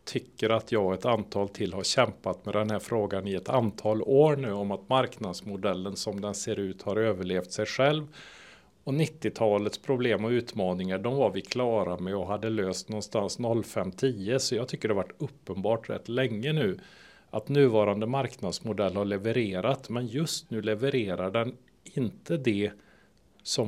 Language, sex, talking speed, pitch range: Swedish, male, 170 wpm, 105-135 Hz